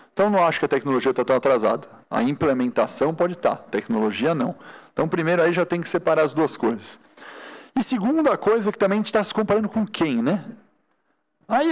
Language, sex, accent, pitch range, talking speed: Portuguese, male, Brazilian, 125-200 Hz, 200 wpm